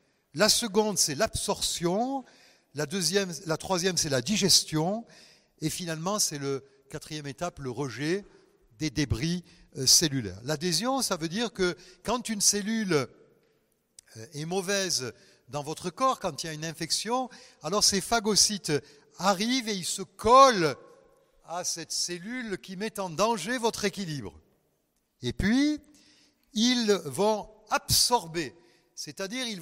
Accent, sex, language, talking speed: French, male, French, 130 wpm